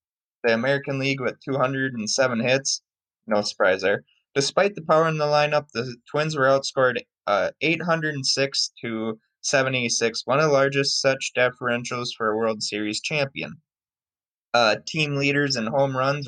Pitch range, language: 115-140 Hz, English